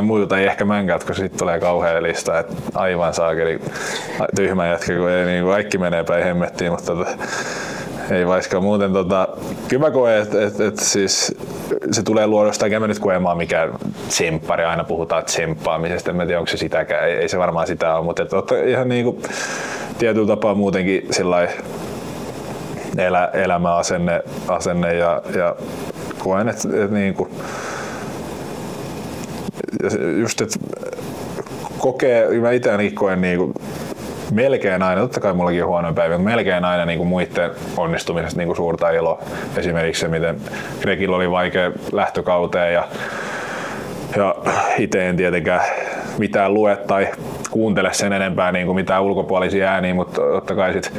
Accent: native